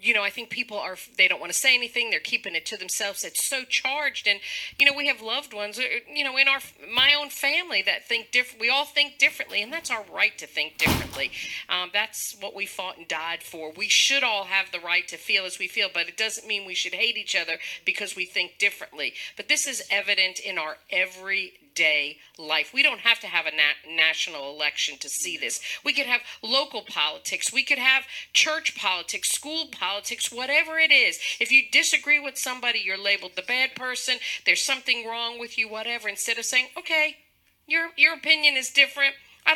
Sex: female